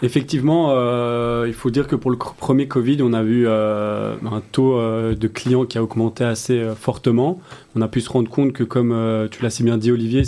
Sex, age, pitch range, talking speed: male, 30-49, 115-125 Hz, 240 wpm